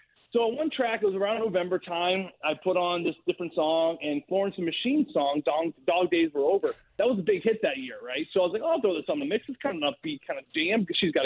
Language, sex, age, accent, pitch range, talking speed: English, male, 30-49, American, 170-255 Hz, 290 wpm